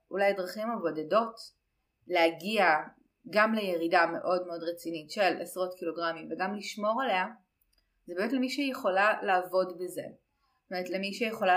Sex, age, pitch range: female, 30-49, 165-210 Hz